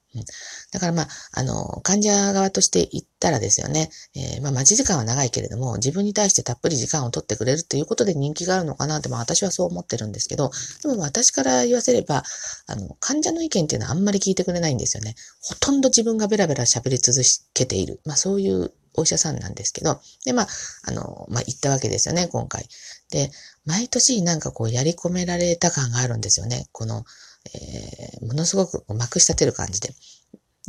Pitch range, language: 120-185 Hz, Japanese